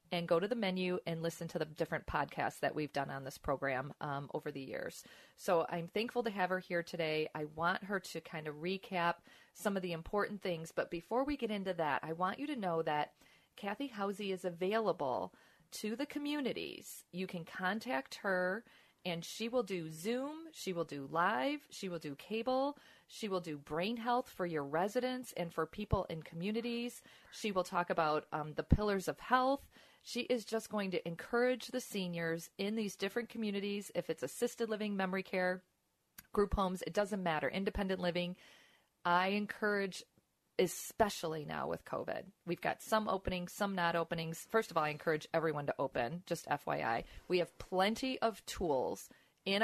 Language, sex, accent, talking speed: English, female, American, 185 wpm